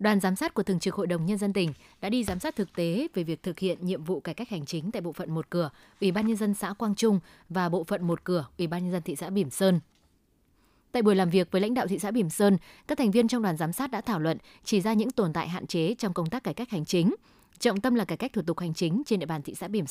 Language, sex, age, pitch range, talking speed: Vietnamese, female, 20-39, 175-220 Hz, 305 wpm